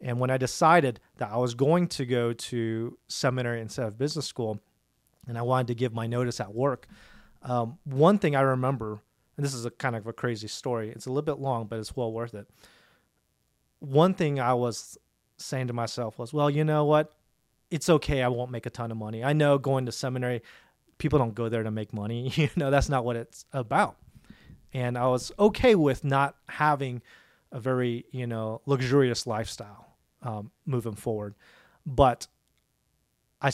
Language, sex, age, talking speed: English, male, 30-49, 190 wpm